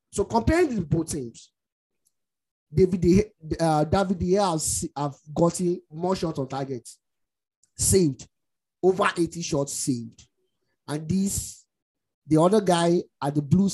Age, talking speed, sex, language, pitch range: 20-39, 130 wpm, male, English, 135-170 Hz